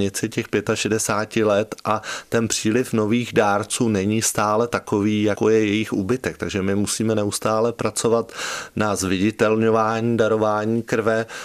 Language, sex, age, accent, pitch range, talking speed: Czech, male, 20-39, native, 95-115 Hz, 125 wpm